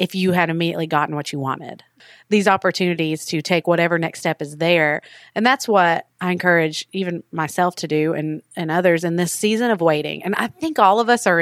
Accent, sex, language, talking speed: American, female, English, 215 wpm